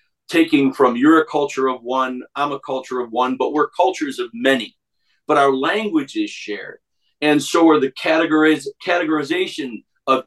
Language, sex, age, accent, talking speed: English, male, 50-69, American, 160 wpm